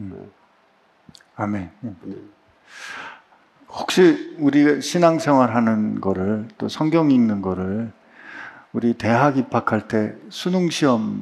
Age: 50-69